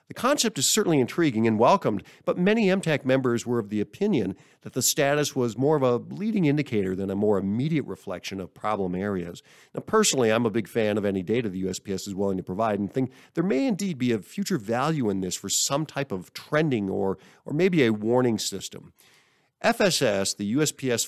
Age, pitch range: 50-69, 100-145 Hz